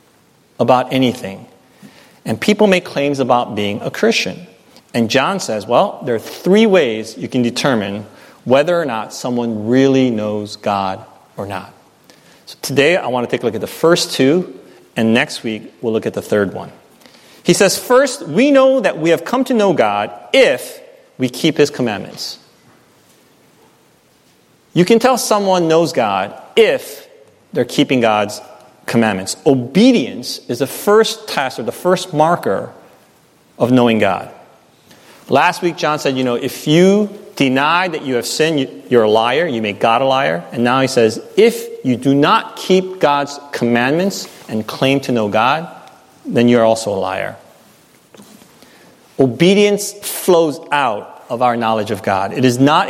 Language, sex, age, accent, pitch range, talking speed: English, male, 30-49, American, 120-185 Hz, 165 wpm